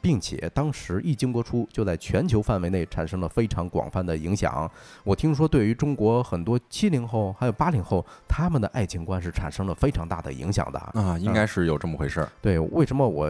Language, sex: Chinese, male